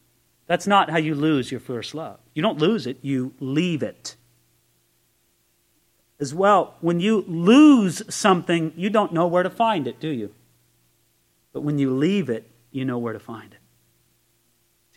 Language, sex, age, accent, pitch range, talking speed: English, male, 40-59, American, 170-285 Hz, 165 wpm